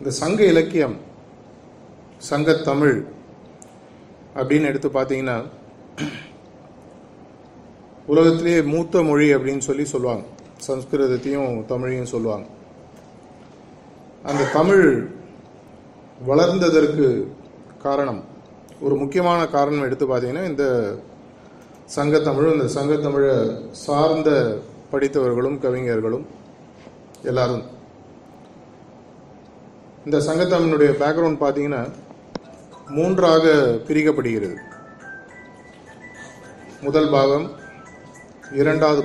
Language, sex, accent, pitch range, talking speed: Tamil, male, native, 135-155 Hz, 65 wpm